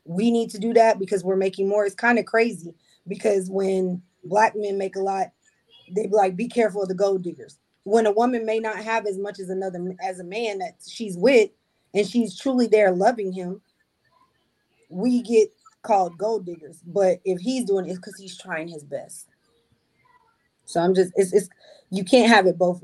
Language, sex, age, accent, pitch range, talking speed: English, female, 20-39, American, 185-225 Hz, 200 wpm